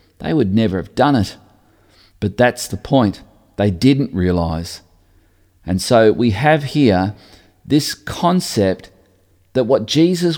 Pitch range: 95-125 Hz